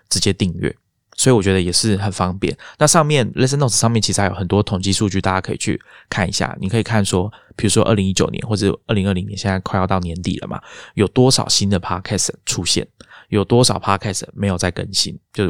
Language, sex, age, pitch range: Chinese, male, 20-39, 95-110 Hz